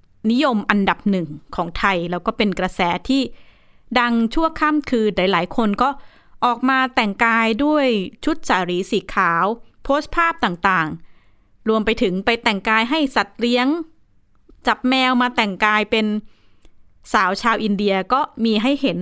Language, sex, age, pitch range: Thai, female, 20-39, 195-255 Hz